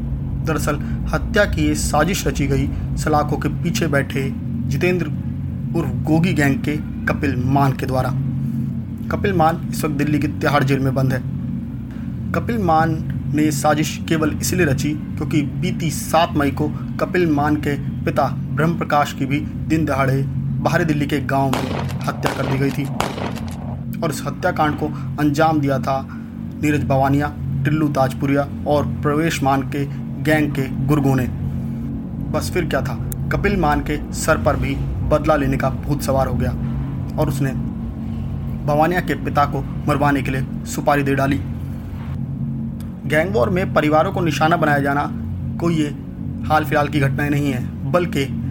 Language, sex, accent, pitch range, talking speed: Hindi, male, native, 130-150 Hz, 120 wpm